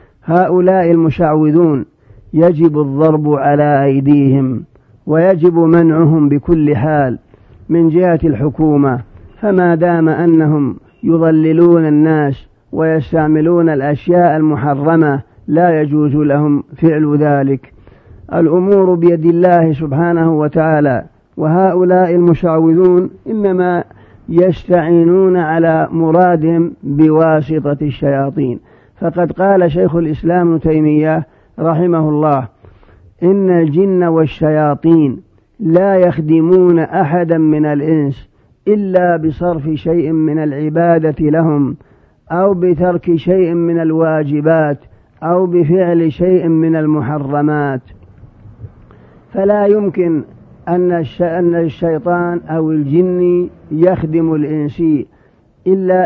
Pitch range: 150-175 Hz